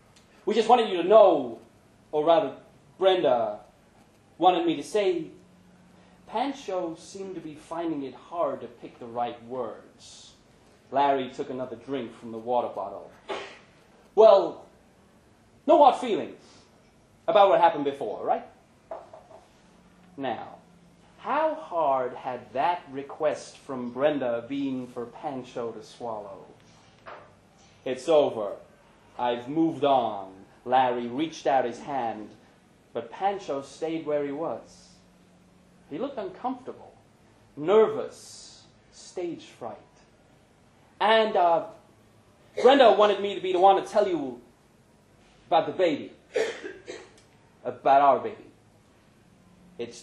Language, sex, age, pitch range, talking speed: English, male, 30-49, 120-185 Hz, 115 wpm